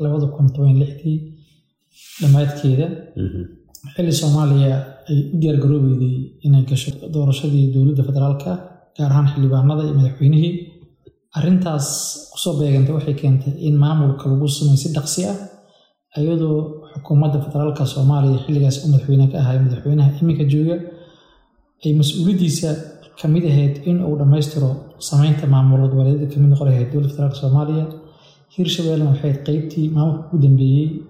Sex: male